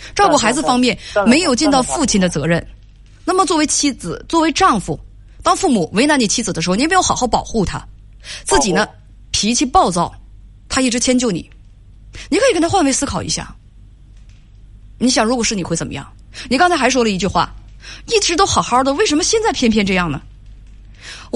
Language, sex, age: Chinese, female, 20-39